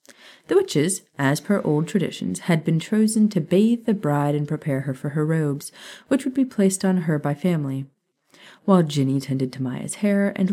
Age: 30-49